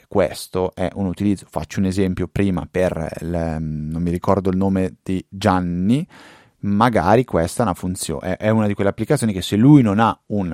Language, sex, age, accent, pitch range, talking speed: Italian, male, 30-49, native, 90-110 Hz, 180 wpm